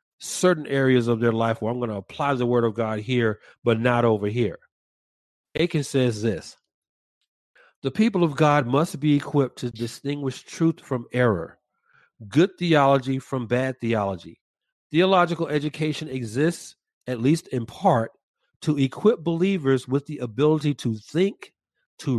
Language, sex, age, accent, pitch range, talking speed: English, male, 40-59, American, 125-165 Hz, 150 wpm